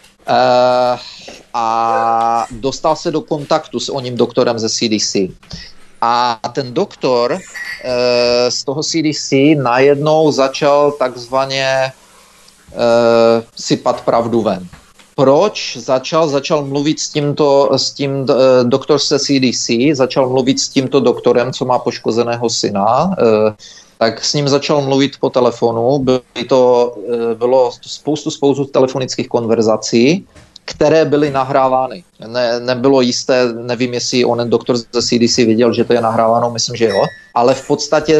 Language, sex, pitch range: Czech, male, 120-135 Hz